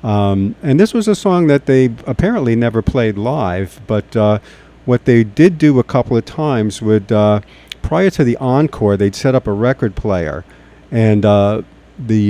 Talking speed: 180 wpm